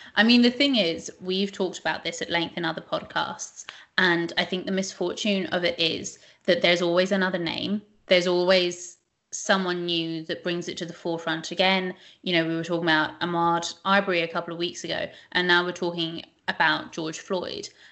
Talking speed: 195 wpm